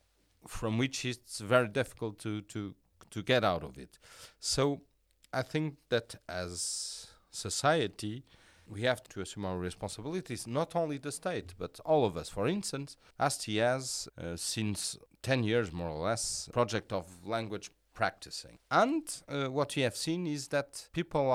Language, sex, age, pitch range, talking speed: English, male, 40-59, 95-135 Hz, 165 wpm